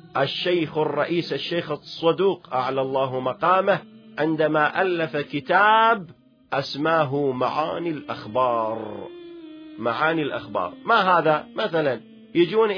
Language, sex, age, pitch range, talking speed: Arabic, male, 40-59, 150-185 Hz, 90 wpm